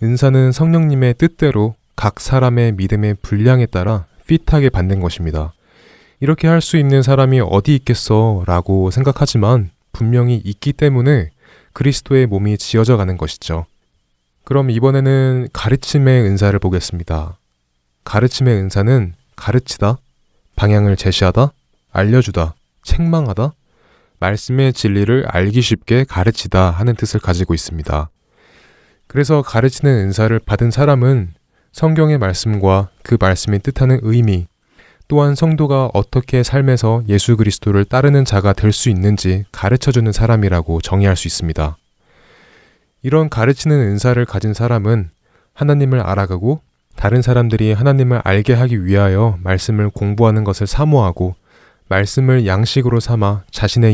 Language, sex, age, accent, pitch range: Korean, male, 20-39, native, 95-130 Hz